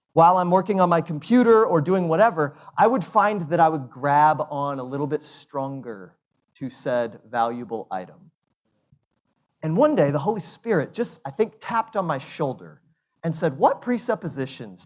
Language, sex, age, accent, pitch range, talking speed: English, male, 40-59, American, 130-185 Hz, 170 wpm